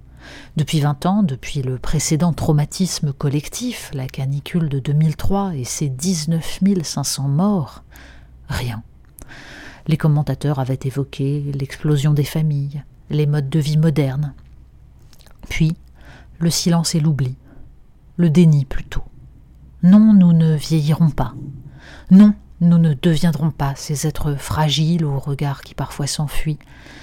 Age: 40-59